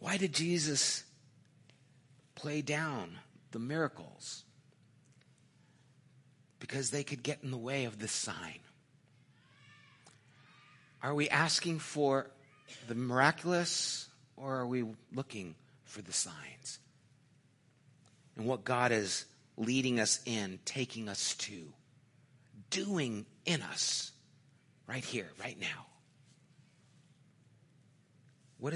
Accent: American